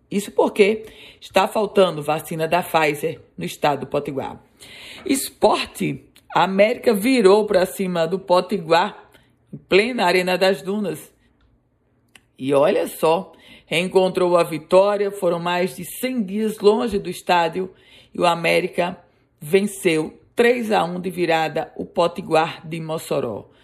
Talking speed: 130 wpm